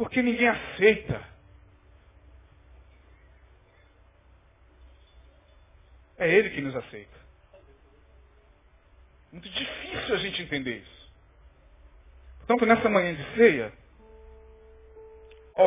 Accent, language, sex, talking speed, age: Brazilian, Portuguese, male, 80 wpm, 40-59